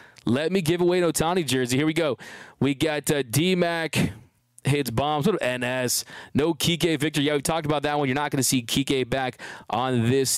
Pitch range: 130-155 Hz